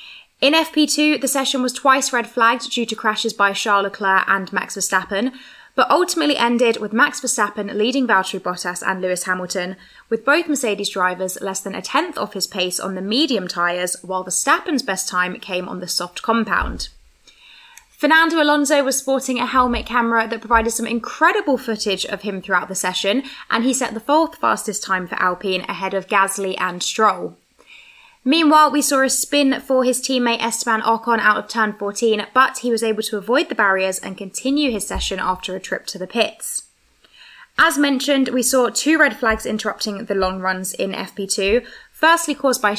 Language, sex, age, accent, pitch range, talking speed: English, female, 20-39, British, 190-265 Hz, 185 wpm